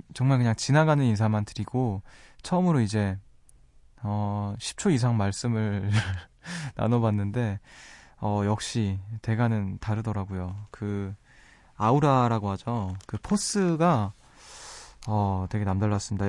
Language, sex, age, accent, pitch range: Korean, male, 20-39, native, 100-120 Hz